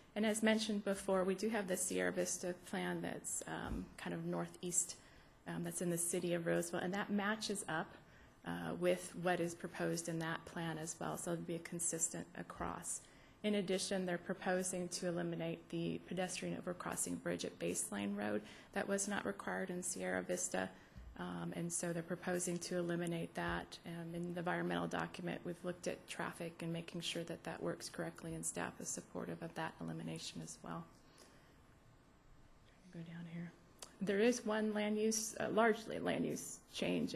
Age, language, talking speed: 30-49, English, 175 wpm